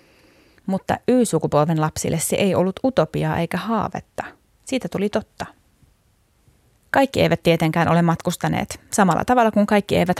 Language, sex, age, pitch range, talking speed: Finnish, female, 30-49, 160-200 Hz, 130 wpm